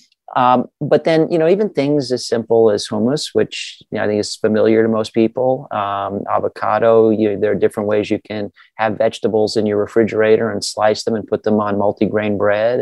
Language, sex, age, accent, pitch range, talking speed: English, male, 40-59, American, 105-130 Hz, 195 wpm